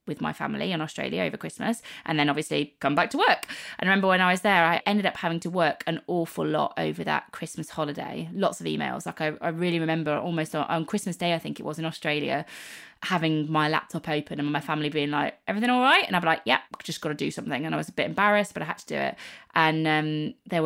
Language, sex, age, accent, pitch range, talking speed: English, female, 20-39, British, 150-190 Hz, 265 wpm